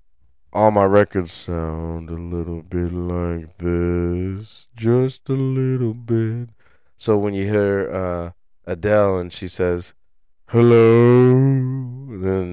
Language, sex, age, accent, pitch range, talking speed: English, male, 20-39, American, 75-100 Hz, 115 wpm